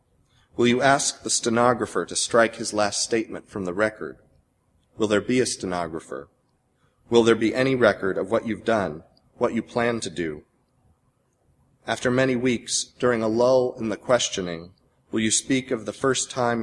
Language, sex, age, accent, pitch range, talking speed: English, male, 30-49, American, 100-120 Hz, 175 wpm